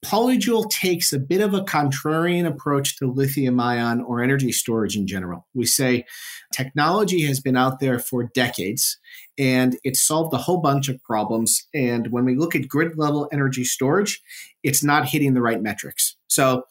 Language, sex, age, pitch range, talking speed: English, male, 40-59, 120-145 Hz, 175 wpm